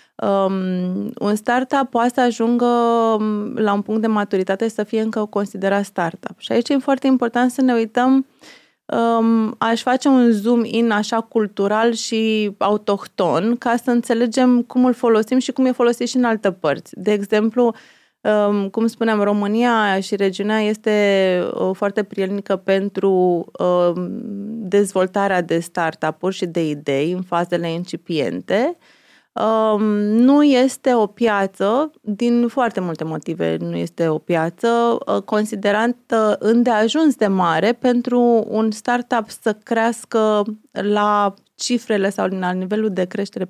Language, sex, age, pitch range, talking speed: Romanian, female, 20-39, 195-235 Hz, 140 wpm